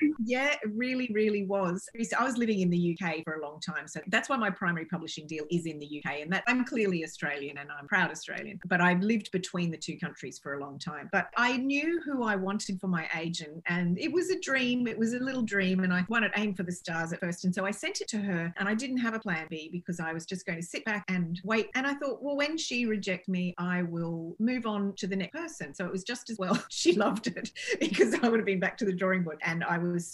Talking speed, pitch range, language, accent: 275 wpm, 165-225 Hz, English, Australian